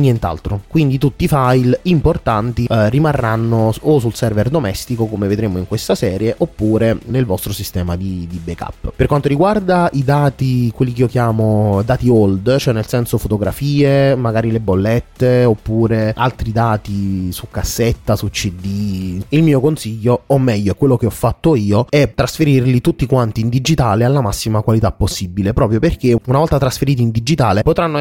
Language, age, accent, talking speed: Italian, 20-39, native, 165 wpm